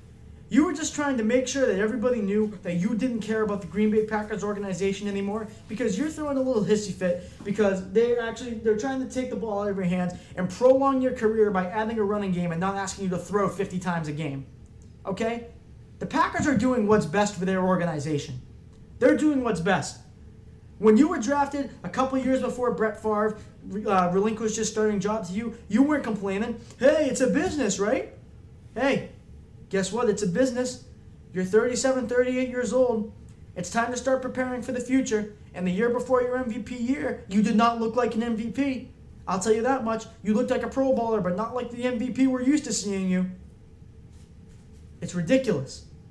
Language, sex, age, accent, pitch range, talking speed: English, male, 20-39, American, 195-250 Hz, 200 wpm